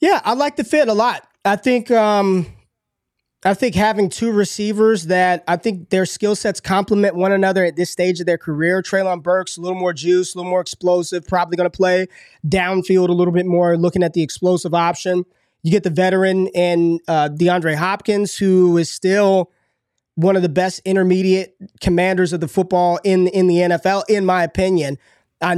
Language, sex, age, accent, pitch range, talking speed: English, male, 20-39, American, 175-200 Hz, 190 wpm